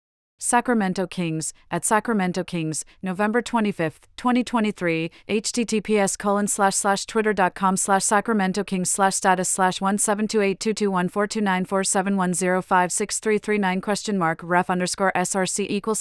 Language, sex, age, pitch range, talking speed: English, female, 40-59, 170-205 Hz, 50 wpm